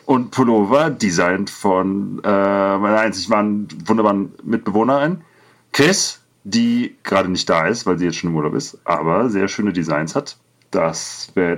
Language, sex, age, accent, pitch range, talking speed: German, male, 40-59, German, 85-115 Hz, 155 wpm